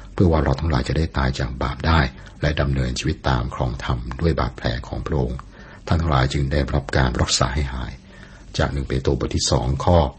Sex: male